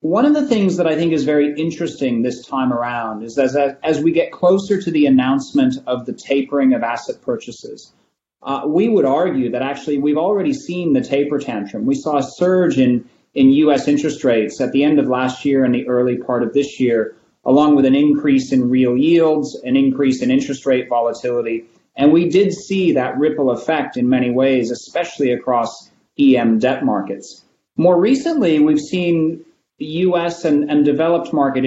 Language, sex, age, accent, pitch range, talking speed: English, male, 30-49, American, 130-165 Hz, 190 wpm